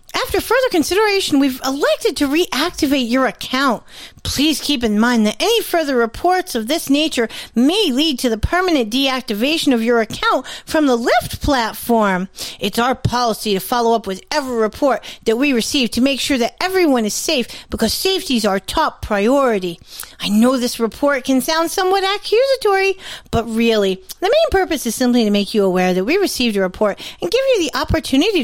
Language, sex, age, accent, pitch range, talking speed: English, female, 40-59, American, 225-320 Hz, 185 wpm